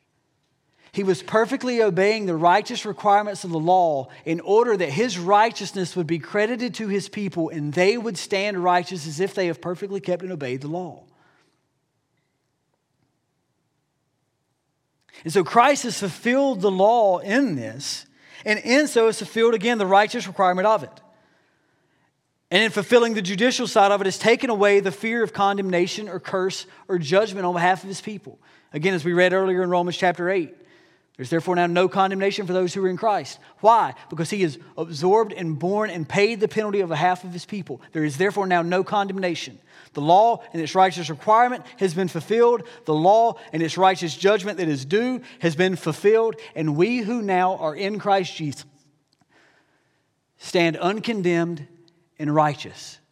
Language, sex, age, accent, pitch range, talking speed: English, male, 40-59, American, 165-210 Hz, 175 wpm